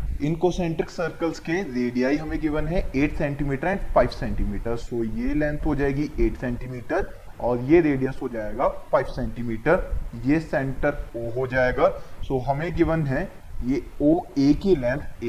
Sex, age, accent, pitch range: male, 20-39, native, 125-170 Hz